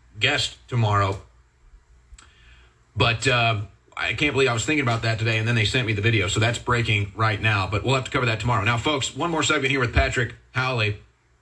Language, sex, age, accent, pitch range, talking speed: English, male, 30-49, American, 110-160 Hz, 215 wpm